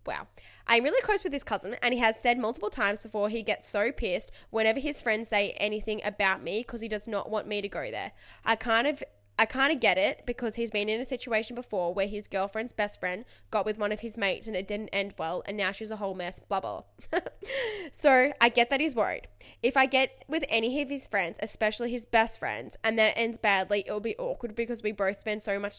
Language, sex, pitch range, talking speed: English, female, 195-230 Hz, 245 wpm